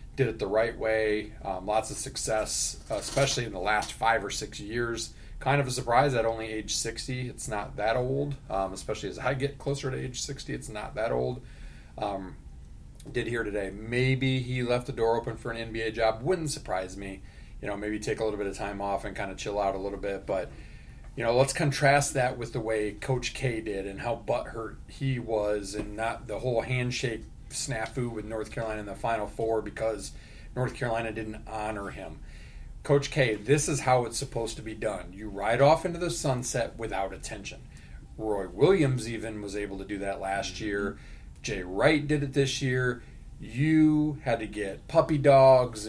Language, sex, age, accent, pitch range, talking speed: English, male, 30-49, American, 105-130 Hz, 200 wpm